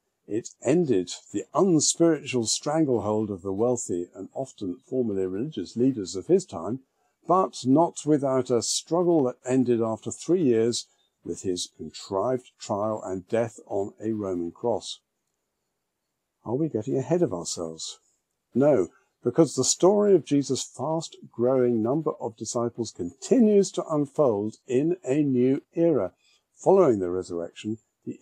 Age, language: 50-69, English